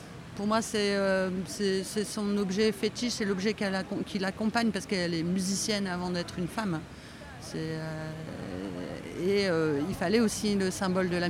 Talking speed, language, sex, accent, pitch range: 170 wpm, French, female, French, 175-210 Hz